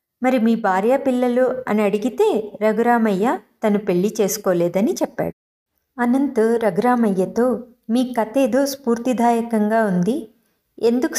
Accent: native